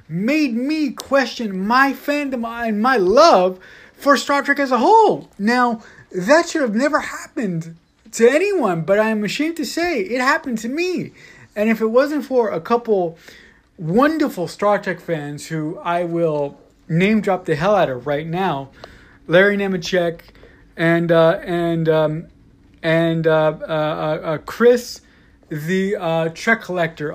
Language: English